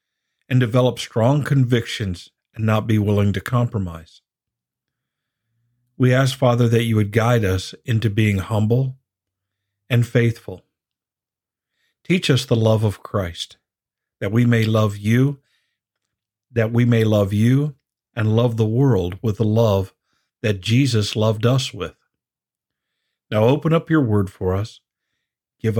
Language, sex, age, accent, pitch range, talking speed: English, male, 50-69, American, 105-130 Hz, 135 wpm